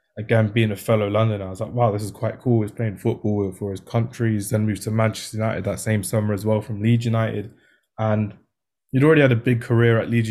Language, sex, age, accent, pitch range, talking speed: English, male, 20-39, British, 105-120 Hz, 240 wpm